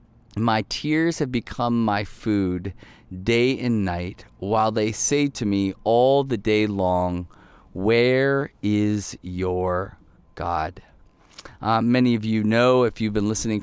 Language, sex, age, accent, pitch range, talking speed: English, male, 30-49, American, 100-115 Hz, 135 wpm